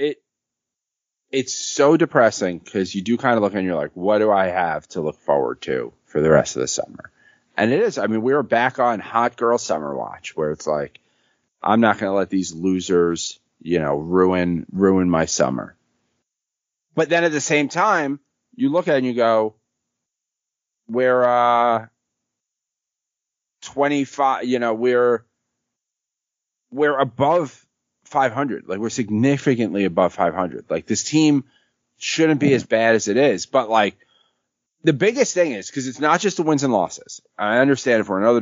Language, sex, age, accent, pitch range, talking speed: English, male, 30-49, American, 100-135 Hz, 175 wpm